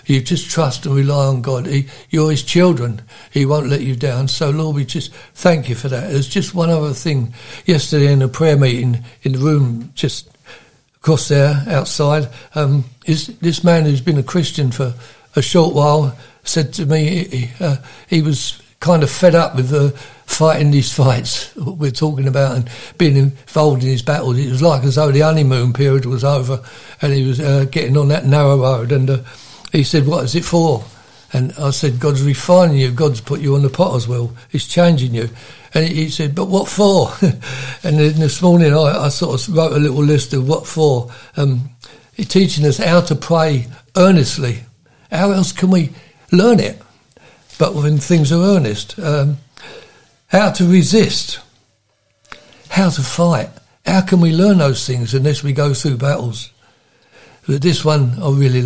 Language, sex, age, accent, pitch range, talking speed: English, male, 60-79, British, 130-160 Hz, 185 wpm